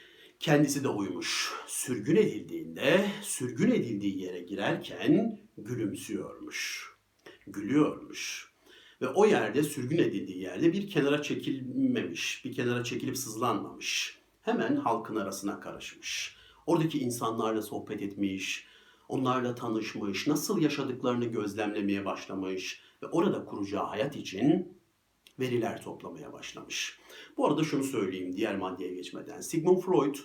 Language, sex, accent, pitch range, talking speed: Turkish, male, native, 105-165 Hz, 110 wpm